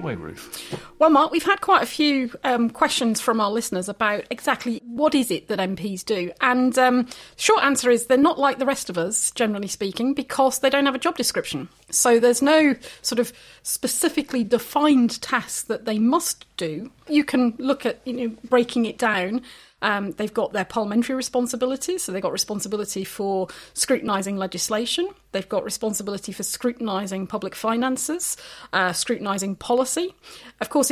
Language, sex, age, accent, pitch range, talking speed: English, female, 30-49, British, 210-260 Hz, 170 wpm